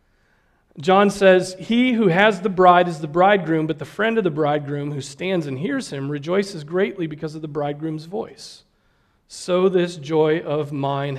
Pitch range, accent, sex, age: 140-175 Hz, American, male, 40-59